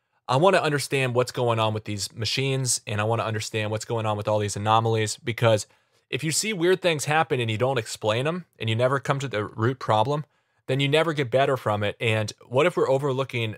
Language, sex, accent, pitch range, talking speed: English, male, American, 110-140 Hz, 240 wpm